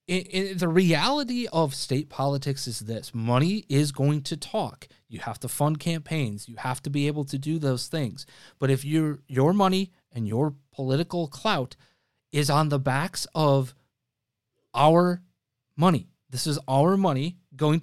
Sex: male